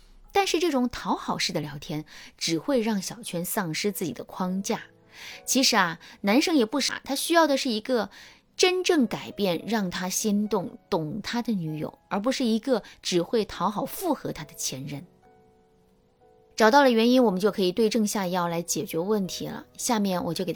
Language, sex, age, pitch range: Chinese, female, 20-39, 175-250 Hz